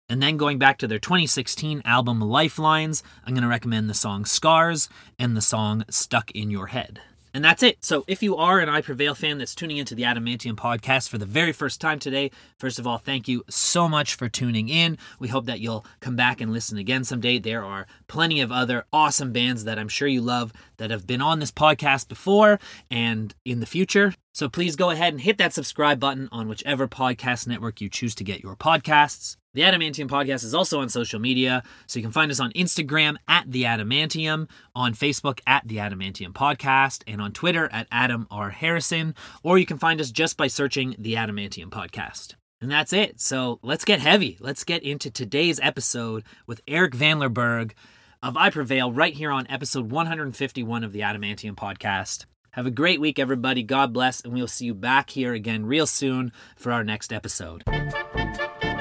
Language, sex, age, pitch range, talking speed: English, male, 30-49, 115-155 Hz, 200 wpm